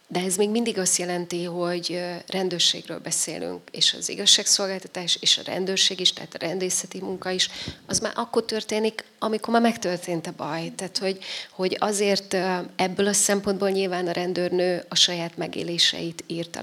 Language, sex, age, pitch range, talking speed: Hungarian, female, 30-49, 170-195 Hz, 160 wpm